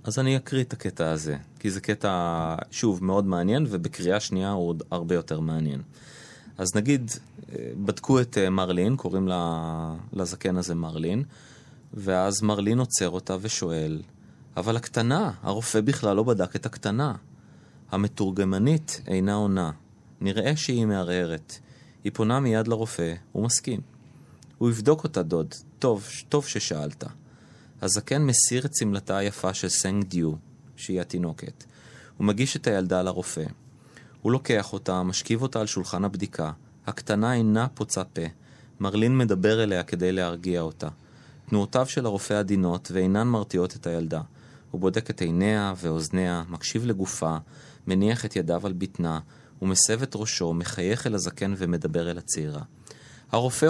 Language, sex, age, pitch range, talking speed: Hebrew, male, 30-49, 90-125 Hz, 135 wpm